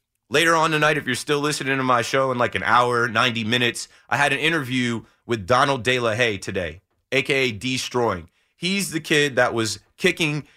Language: English